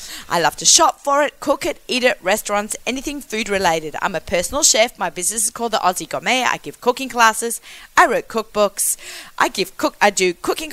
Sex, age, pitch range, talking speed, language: female, 30-49, 180-255 Hz, 200 wpm, English